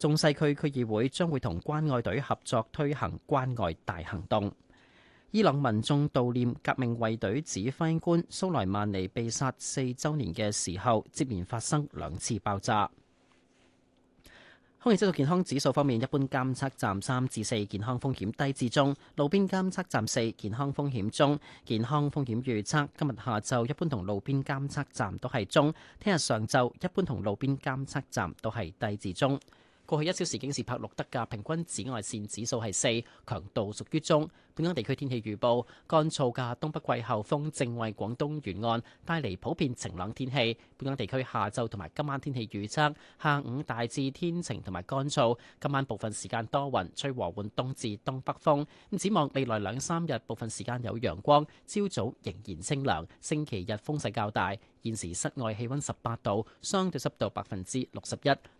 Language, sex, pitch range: Chinese, male, 110-145 Hz